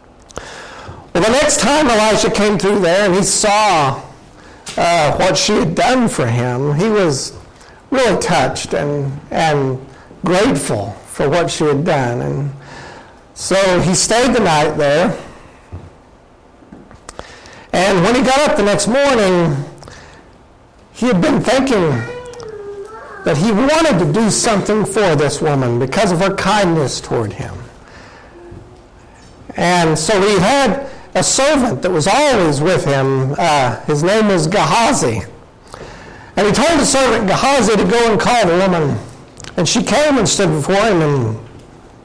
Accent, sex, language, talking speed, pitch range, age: American, male, English, 145 wpm, 150-230 Hz, 60-79